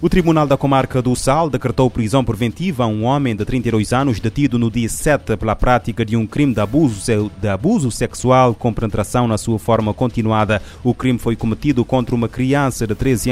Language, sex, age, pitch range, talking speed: Portuguese, male, 30-49, 110-125 Hz, 195 wpm